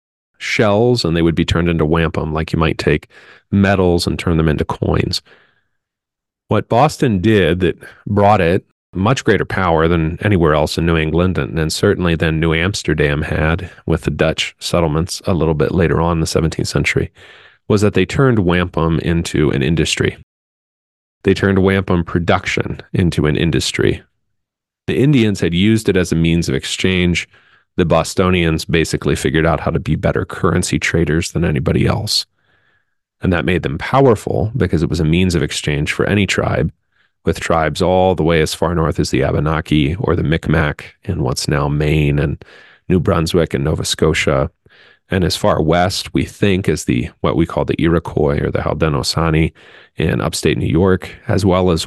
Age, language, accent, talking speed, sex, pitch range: 40-59, English, American, 175 wpm, male, 80-100 Hz